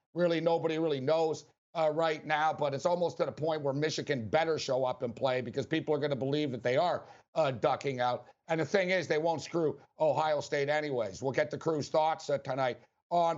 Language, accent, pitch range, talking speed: English, American, 140-165 Hz, 225 wpm